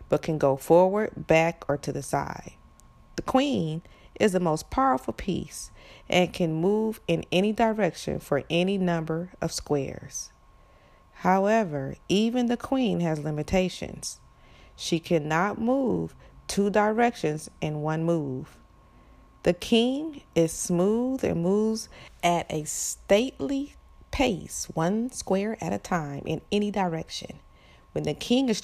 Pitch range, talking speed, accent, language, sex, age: 145-210 Hz, 130 wpm, American, English, female, 40-59